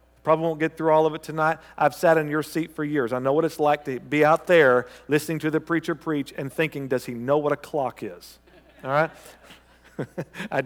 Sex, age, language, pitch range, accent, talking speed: male, 50-69, English, 130-190 Hz, American, 230 wpm